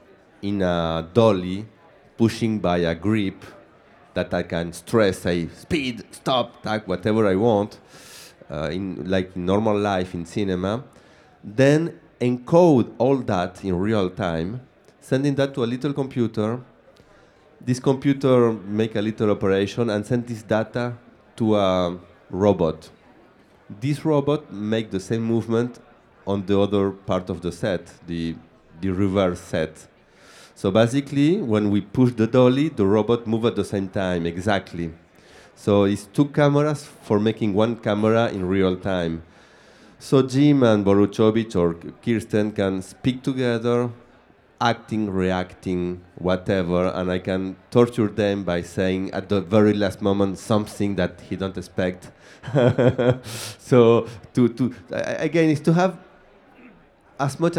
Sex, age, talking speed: male, 30-49, 135 wpm